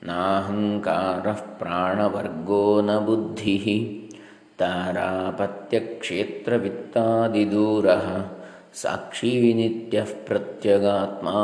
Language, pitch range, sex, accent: Kannada, 100-115 Hz, male, native